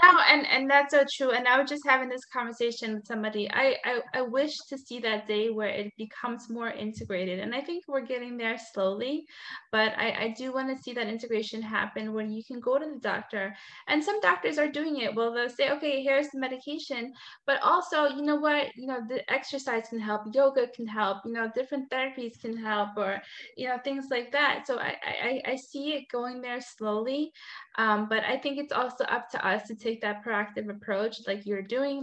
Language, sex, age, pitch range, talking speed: English, female, 20-39, 215-270 Hz, 220 wpm